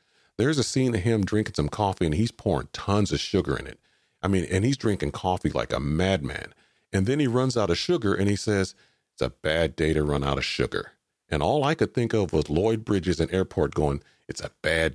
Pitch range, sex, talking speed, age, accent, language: 75-110 Hz, male, 235 wpm, 40-59, American, English